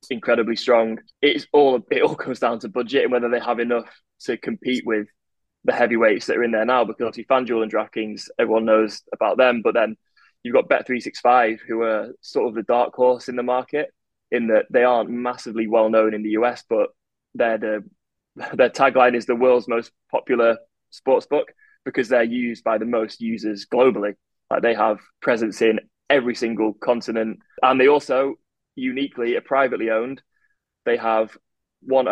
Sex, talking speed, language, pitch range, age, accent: male, 180 wpm, English, 115-130 Hz, 20-39, British